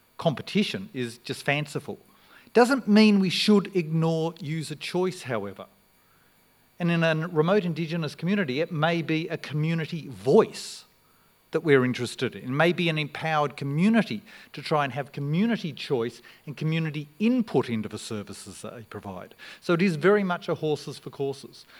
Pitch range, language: 130-170 Hz, English